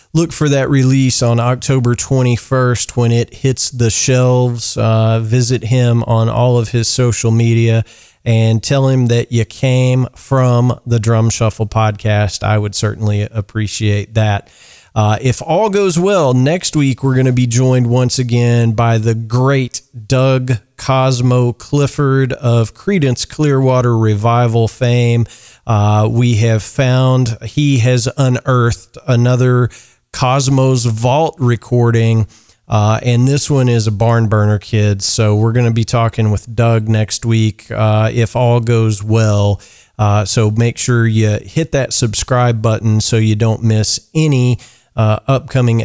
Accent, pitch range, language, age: American, 110-130 Hz, English, 40-59